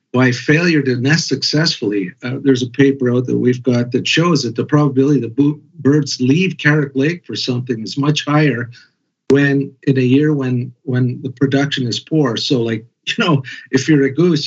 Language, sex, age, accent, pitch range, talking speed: English, male, 50-69, American, 125-150 Hz, 195 wpm